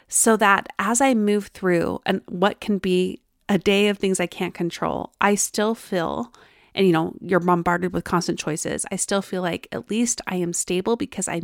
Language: English